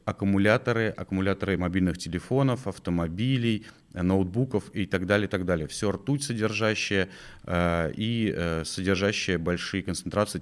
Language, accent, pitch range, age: Russian, native, 95-120 Hz, 30-49